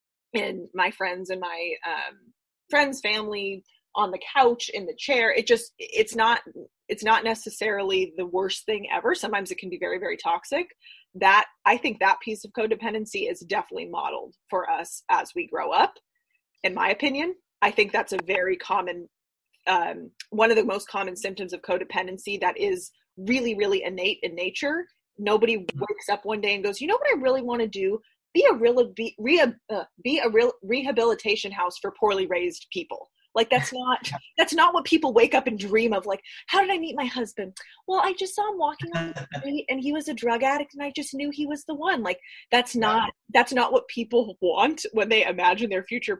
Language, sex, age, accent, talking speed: English, female, 20-39, American, 205 wpm